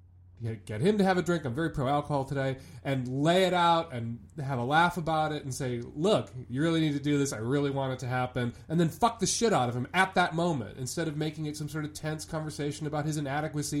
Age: 30-49